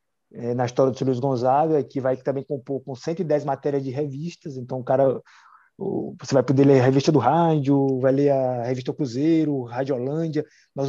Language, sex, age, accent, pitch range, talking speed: Portuguese, male, 20-39, Brazilian, 135-165 Hz, 180 wpm